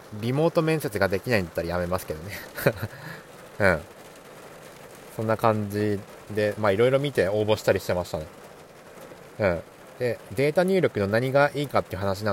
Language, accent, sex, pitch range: Japanese, native, male, 100-145 Hz